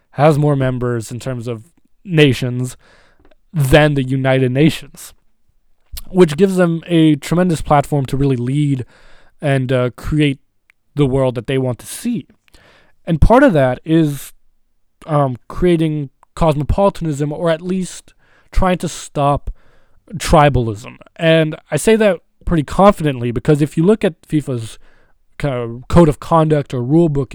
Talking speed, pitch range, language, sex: 145 wpm, 130-170 Hz, English, male